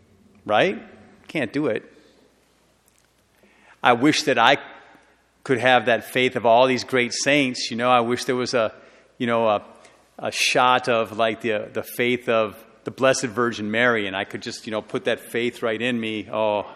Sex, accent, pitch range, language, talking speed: male, American, 110-125 Hz, English, 185 wpm